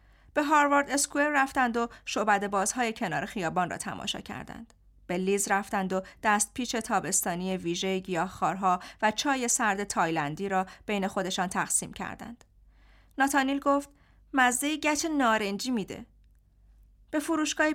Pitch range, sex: 200-280 Hz, female